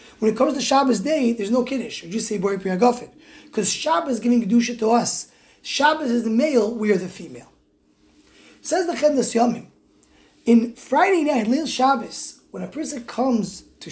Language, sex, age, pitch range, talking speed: English, male, 20-39, 205-260 Hz, 185 wpm